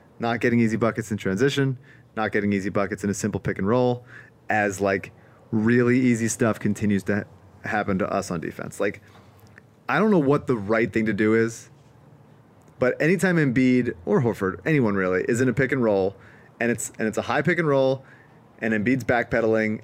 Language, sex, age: English, male, 30-49